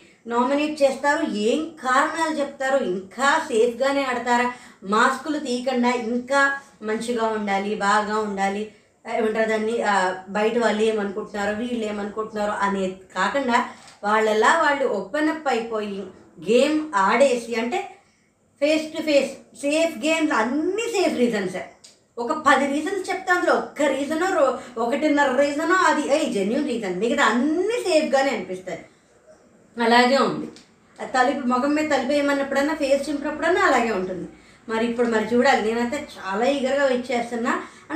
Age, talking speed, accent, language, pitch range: 20-39, 120 wpm, native, Telugu, 225-295 Hz